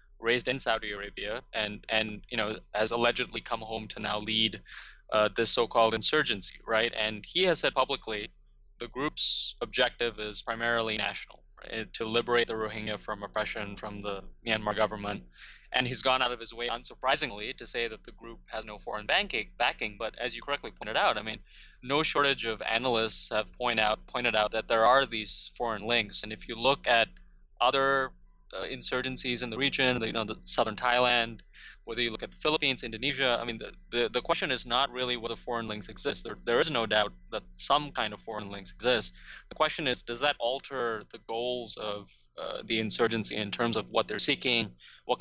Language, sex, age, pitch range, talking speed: English, male, 20-39, 105-125 Hz, 200 wpm